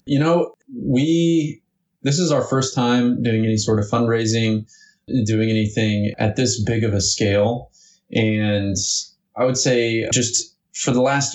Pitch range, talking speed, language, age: 105-120 Hz, 155 wpm, English, 20-39